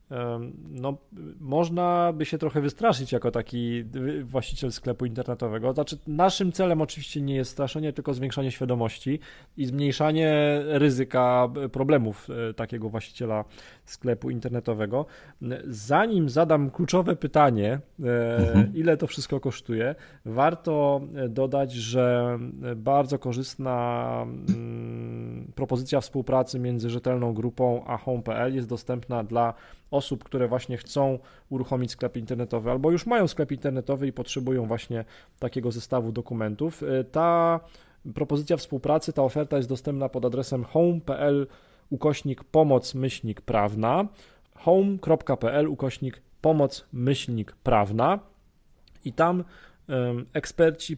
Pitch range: 120-145 Hz